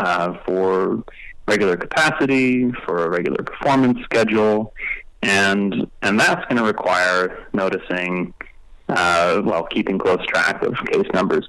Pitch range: 95-120 Hz